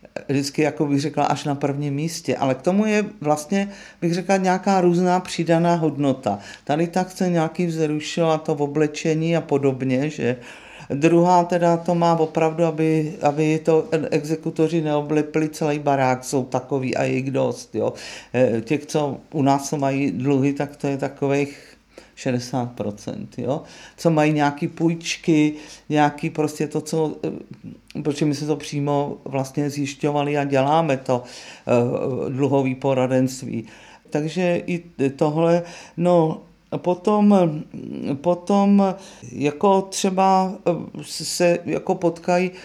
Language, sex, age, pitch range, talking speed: Czech, male, 50-69, 145-175 Hz, 130 wpm